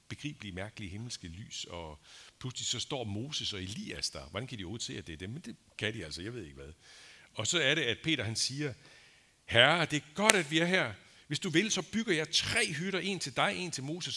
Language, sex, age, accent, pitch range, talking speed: Danish, male, 60-79, native, 95-135 Hz, 235 wpm